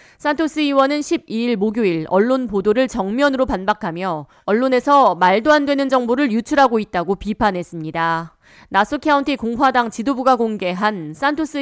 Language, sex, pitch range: Korean, female, 190-275 Hz